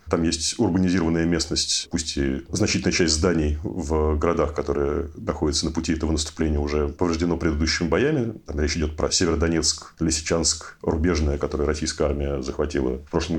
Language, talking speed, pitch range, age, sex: Russian, 150 wpm, 80-95 Hz, 30-49, male